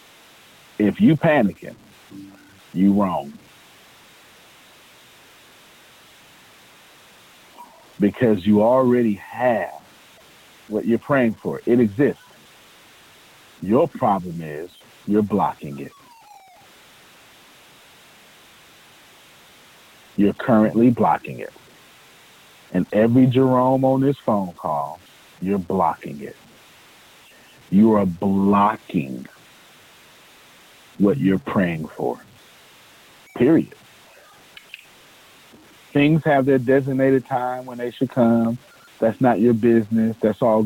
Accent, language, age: American, English, 50-69